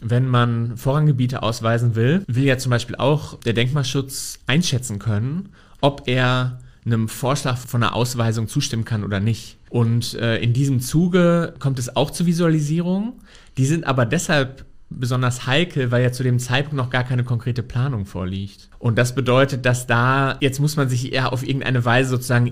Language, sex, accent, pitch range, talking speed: German, male, German, 120-140 Hz, 175 wpm